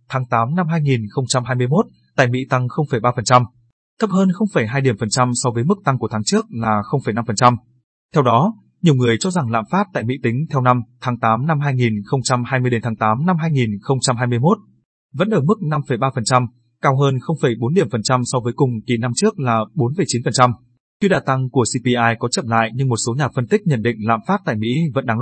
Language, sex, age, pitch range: Vietnamese, male, 20-39, 120-150 Hz